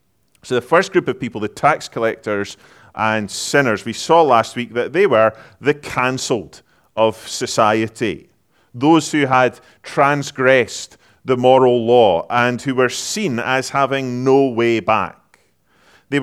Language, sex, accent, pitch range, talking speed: English, male, British, 115-140 Hz, 145 wpm